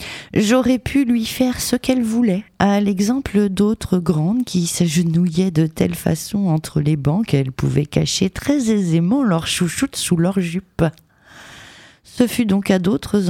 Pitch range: 140-195 Hz